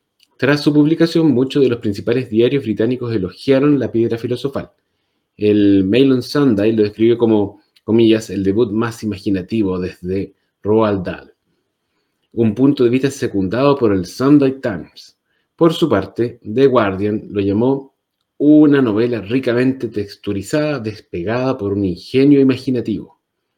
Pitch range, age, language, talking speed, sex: 105-135 Hz, 30-49, Spanish, 130 wpm, male